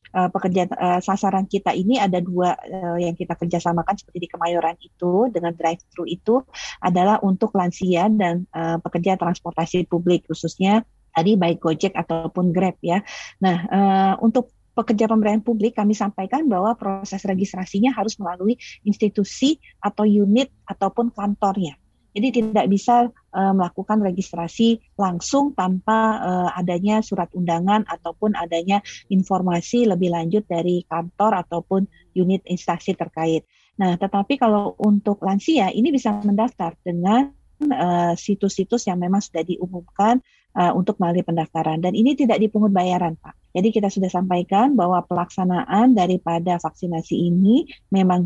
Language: Indonesian